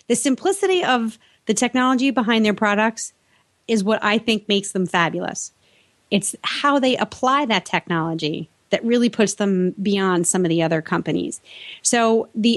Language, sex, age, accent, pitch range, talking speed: English, female, 30-49, American, 190-235 Hz, 160 wpm